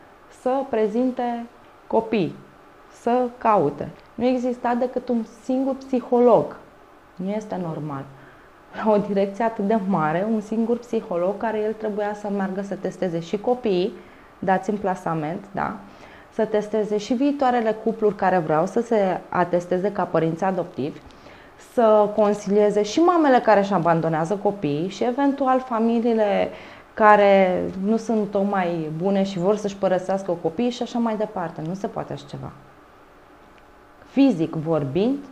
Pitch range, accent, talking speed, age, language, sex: 185-230 Hz, native, 140 wpm, 20-39, Romanian, female